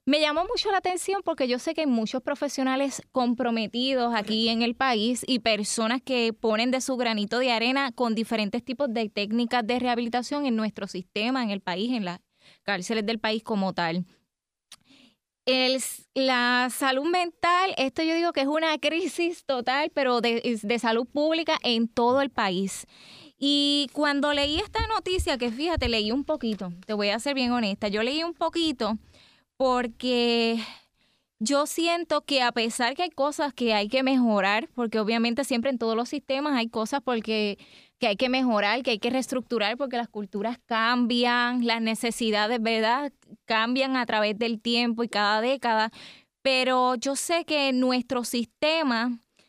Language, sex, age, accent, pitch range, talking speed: Spanish, female, 10-29, American, 230-280 Hz, 170 wpm